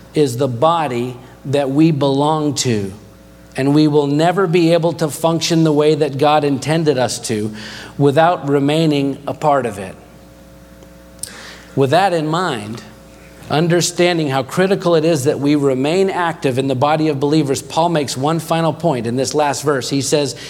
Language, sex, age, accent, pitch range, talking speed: English, male, 40-59, American, 135-175 Hz, 165 wpm